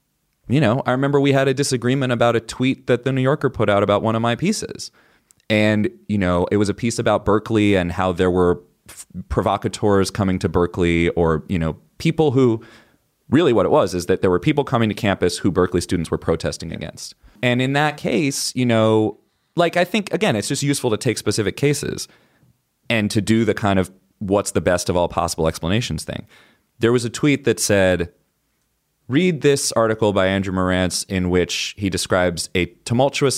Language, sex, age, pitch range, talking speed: English, male, 30-49, 90-115 Hz, 200 wpm